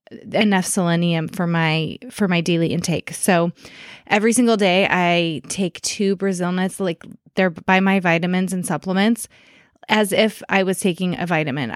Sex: female